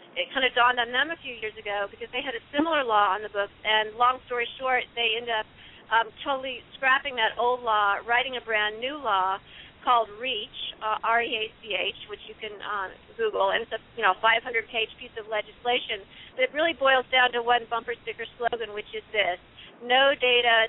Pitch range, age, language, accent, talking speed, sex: 220-250 Hz, 40-59, English, American, 200 wpm, female